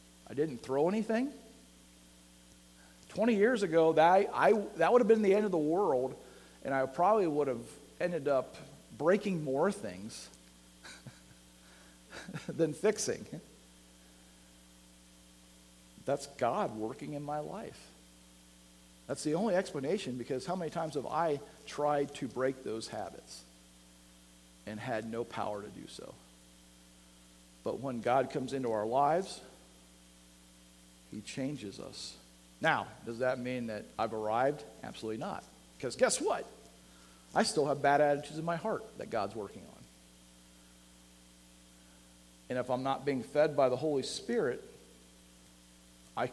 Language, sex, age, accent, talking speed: English, male, 50-69, American, 130 wpm